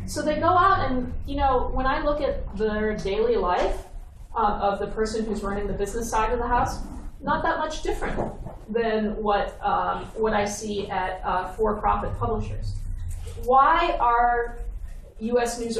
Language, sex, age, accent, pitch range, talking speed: English, female, 30-49, American, 190-245 Hz, 165 wpm